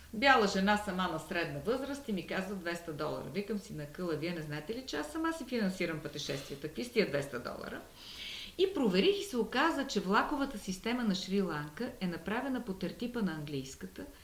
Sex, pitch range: female, 165-255 Hz